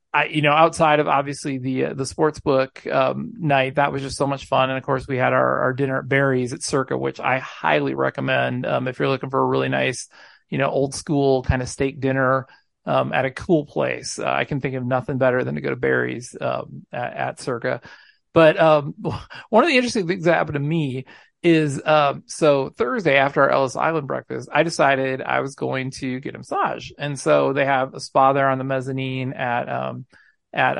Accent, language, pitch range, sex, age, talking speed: American, English, 130-160 Hz, male, 40-59, 220 wpm